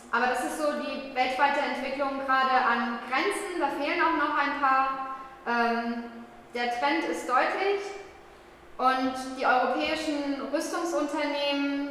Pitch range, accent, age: 240-290 Hz, German, 10-29